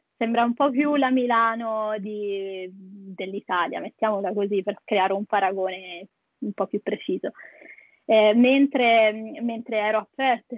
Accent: native